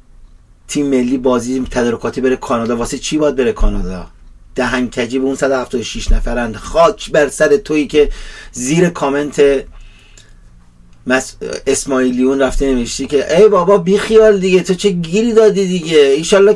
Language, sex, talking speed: Persian, male, 145 wpm